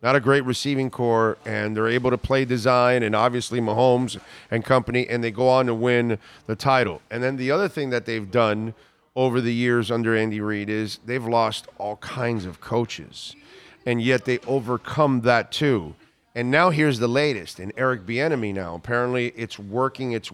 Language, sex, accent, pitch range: English, male, American, 120-145 Hz